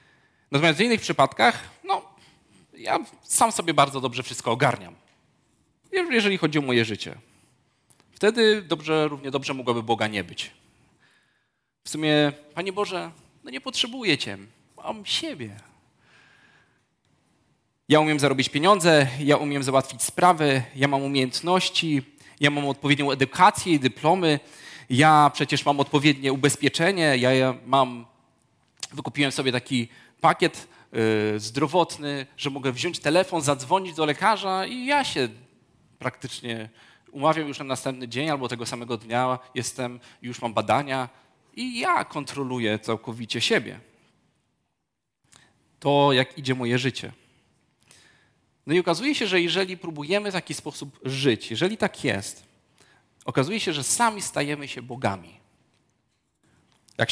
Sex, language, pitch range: male, Polish, 125-160 Hz